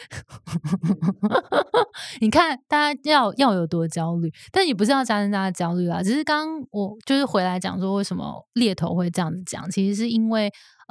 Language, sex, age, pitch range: Chinese, female, 20-39, 180-220 Hz